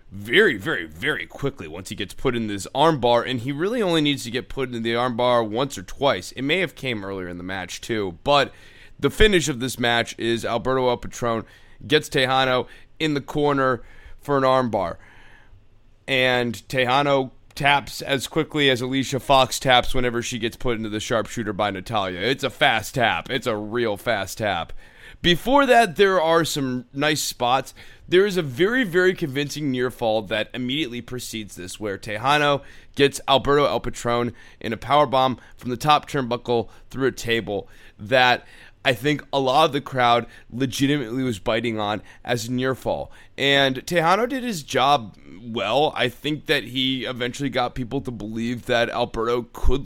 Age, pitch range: 30-49, 110-140 Hz